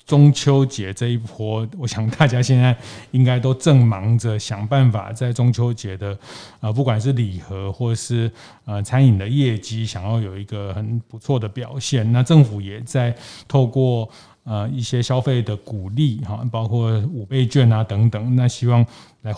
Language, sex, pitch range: Chinese, male, 105-125 Hz